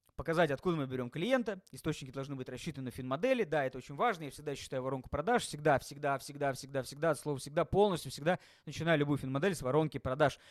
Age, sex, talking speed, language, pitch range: 20-39, male, 205 wpm, Russian, 140-185 Hz